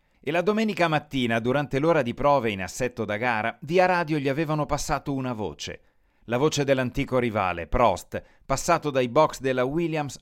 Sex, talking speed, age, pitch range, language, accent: male, 170 wpm, 30-49, 115-150 Hz, Italian, native